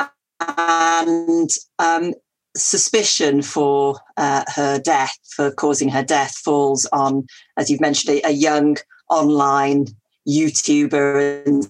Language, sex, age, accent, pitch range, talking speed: English, female, 40-59, British, 140-165 Hz, 115 wpm